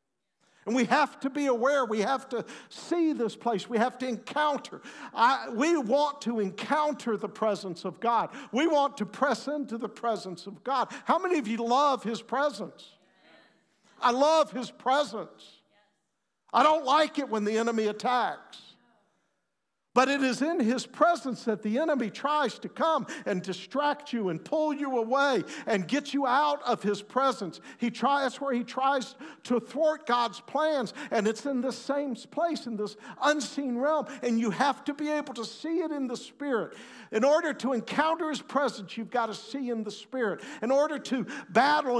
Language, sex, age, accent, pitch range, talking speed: English, male, 50-69, American, 225-290 Hz, 180 wpm